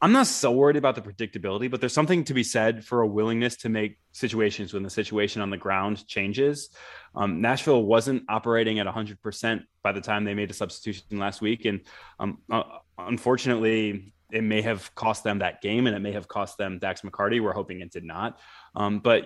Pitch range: 100-125 Hz